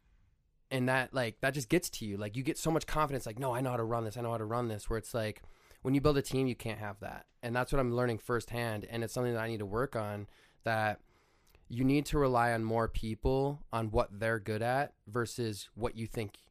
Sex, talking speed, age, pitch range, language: male, 260 wpm, 20-39, 110-130 Hz, English